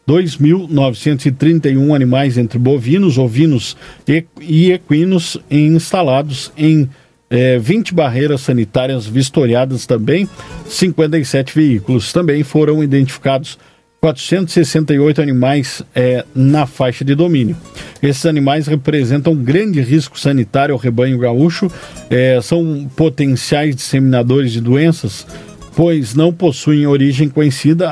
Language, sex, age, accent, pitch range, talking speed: Portuguese, male, 50-69, Brazilian, 130-160 Hz, 100 wpm